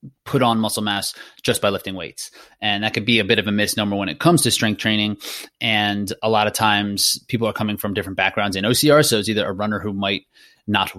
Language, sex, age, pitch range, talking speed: English, male, 30-49, 100-115 Hz, 240 wpm